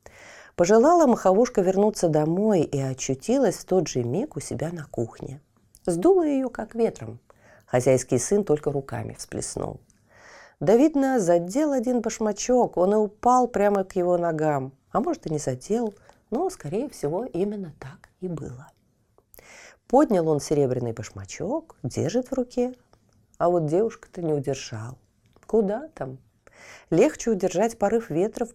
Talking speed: 140 wpm